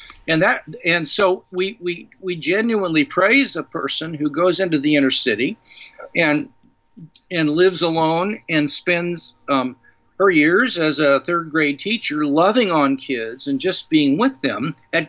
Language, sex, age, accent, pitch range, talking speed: English, male, 50-69, American, 145-200 Hz, 160 wpm